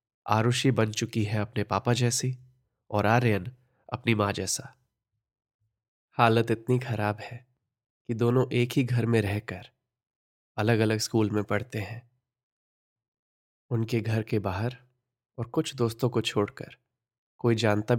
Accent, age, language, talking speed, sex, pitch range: native, 20-39, Hindi, 135 wpm, male, 110-125 Hz